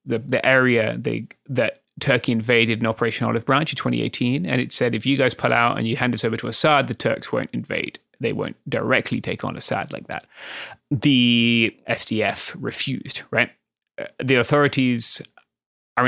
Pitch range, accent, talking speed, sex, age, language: 115-135 Hz, British, 170 wpm, male, 20-39, English